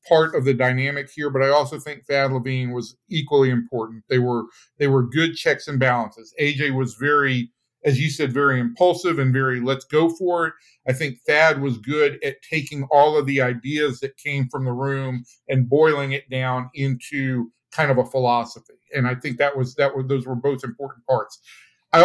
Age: 50-69